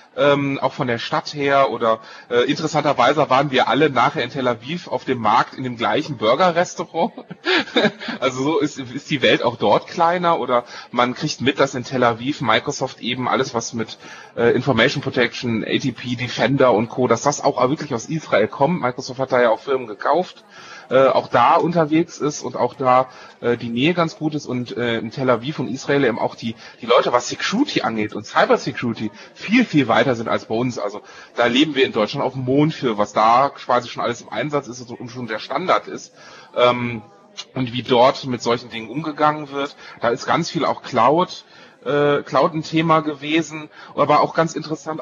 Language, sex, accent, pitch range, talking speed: German, male, German, 120-150 Hz, 205 wpm